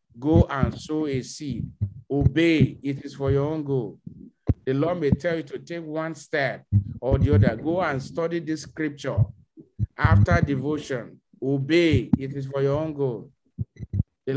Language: English